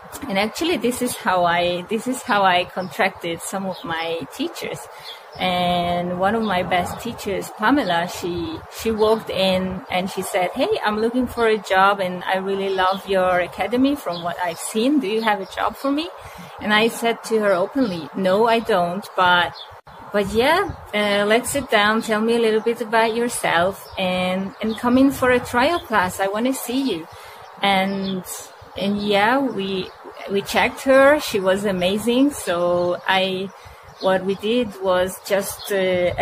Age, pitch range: 20-39, 185-225 Hz